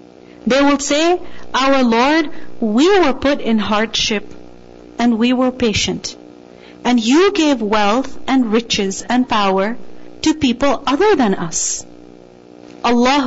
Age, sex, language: 40-59, female, English